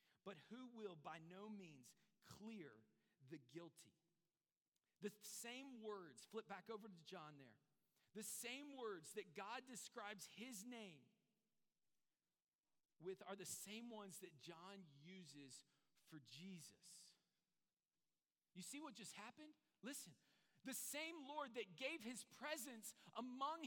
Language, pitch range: English, 190-270 Hz